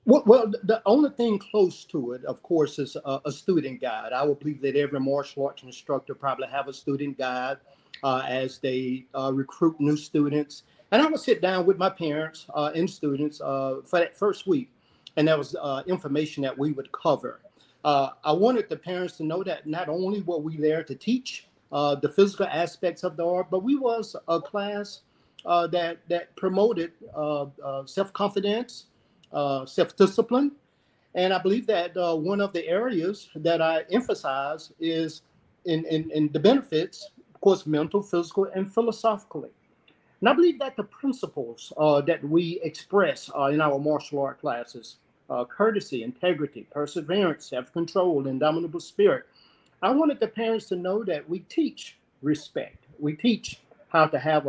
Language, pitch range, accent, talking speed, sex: English, 145-195 Hz, American, 175 wpm, male